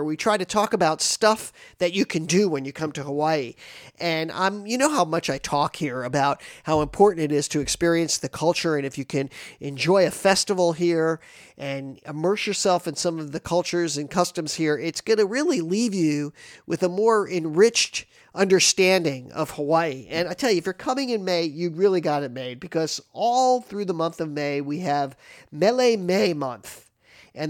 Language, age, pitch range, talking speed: English, 50-69, 145-190 Hz, 200 wpm